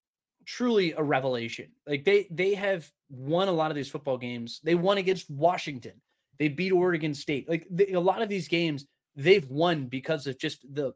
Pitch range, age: 130-180 Hz, 20-39